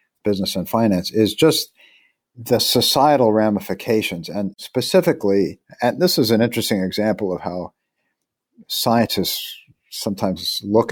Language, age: English, 50-69